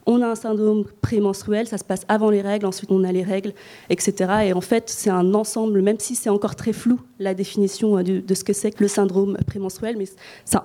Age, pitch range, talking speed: 20-39, 190-220 Hz, 230 wpm